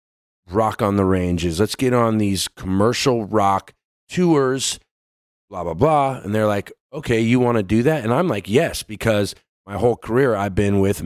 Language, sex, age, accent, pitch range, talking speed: English, male, 40-59, American, 95-120 Hz, 185 wpm